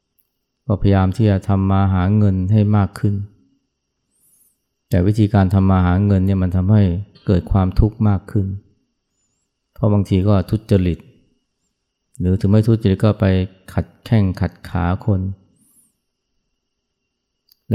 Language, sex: Thai, male